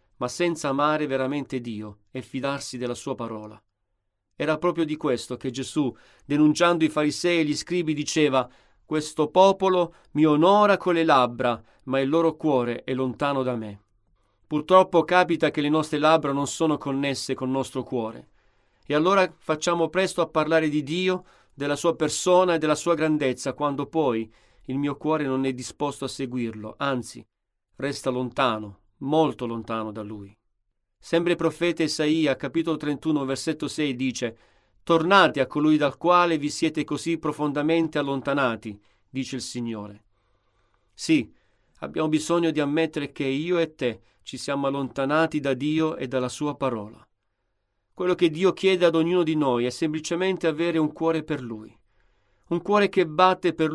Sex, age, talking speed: male, 40-59, 160 wpm